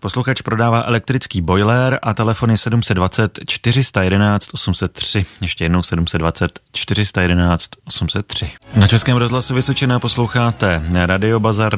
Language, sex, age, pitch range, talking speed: Czech, male, 30-49, 90-115 Hz, 110 wpm